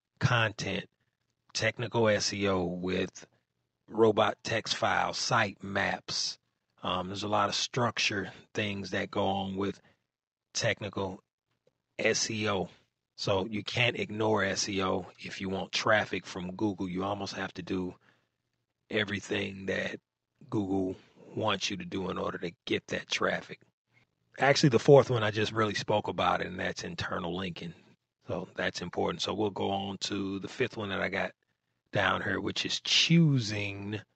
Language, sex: English, male